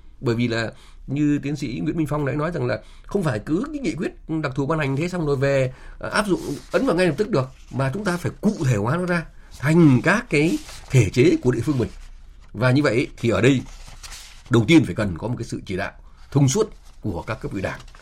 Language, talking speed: Vietnamese, 255 wpm